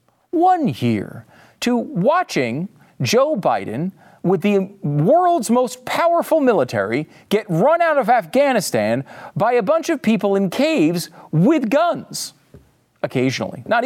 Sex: male